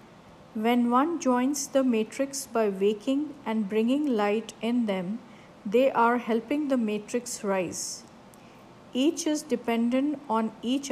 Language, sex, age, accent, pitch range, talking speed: English, female, 50-69, Indian, 215-250 Hz, 125 wpm